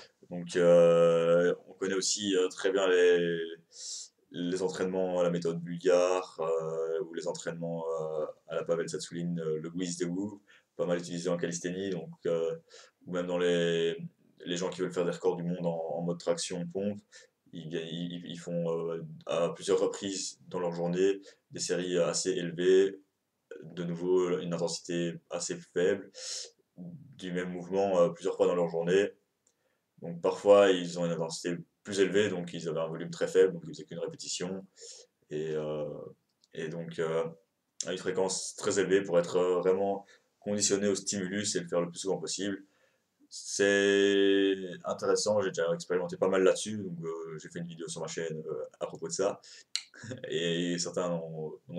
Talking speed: 175 wpm